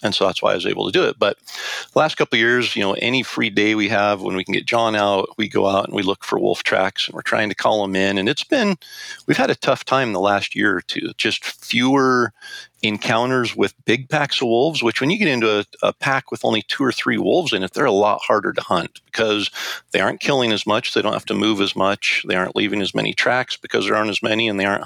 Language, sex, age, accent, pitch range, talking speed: English, male, 40-59, American, 100-120 Hz, 280 wpm